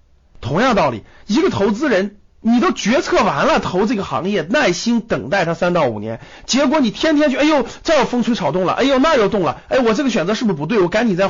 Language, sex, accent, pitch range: Chinese, male, native, 120-200 Hz